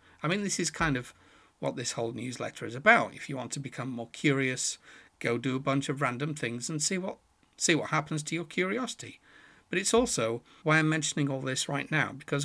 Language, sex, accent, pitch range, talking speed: English, male, British, 125-155 Hz, 220 wpm